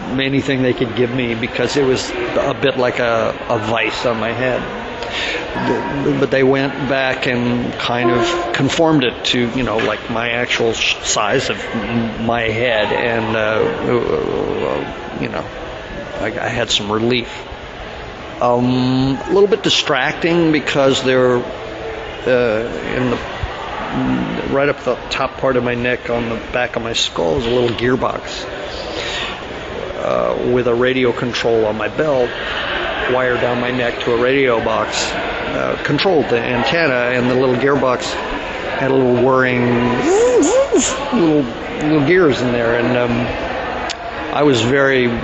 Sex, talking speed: male, 145 wpm